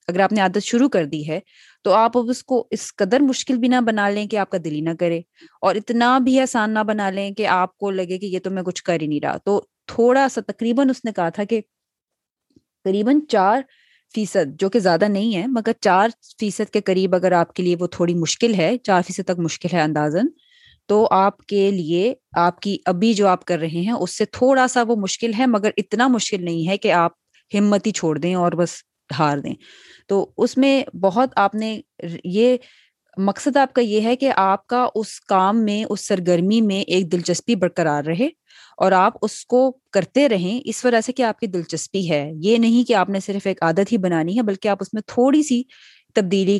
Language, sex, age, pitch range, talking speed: Urdu, female, 20-39, 175-225 Hz, 220 wpm